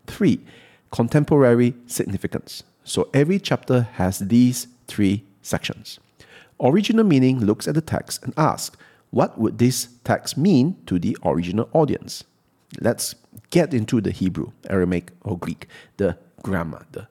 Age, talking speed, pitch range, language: 50-69, 135 wpm, 100-125 Hz, English